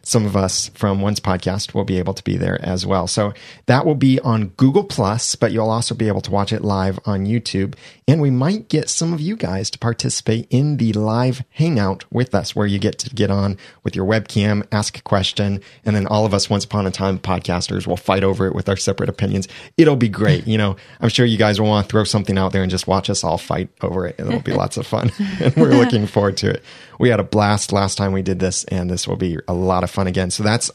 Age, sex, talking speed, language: 30-49, male, 260 wpm, English